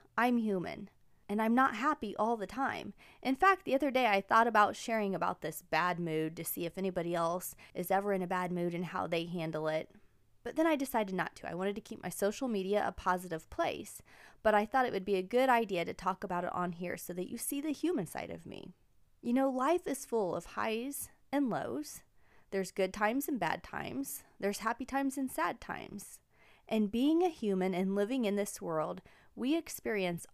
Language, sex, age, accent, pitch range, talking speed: English, female, 20-39, American, 180-255 Hz, 220 wpm